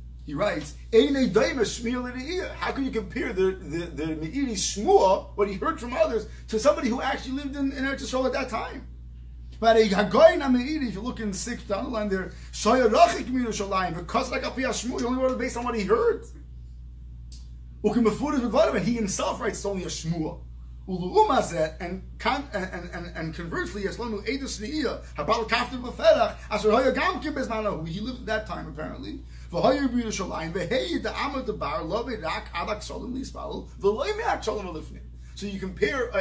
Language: English